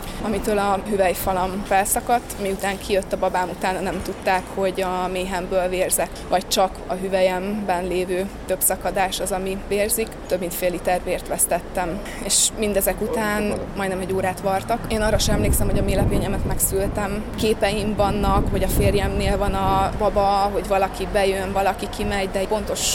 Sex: female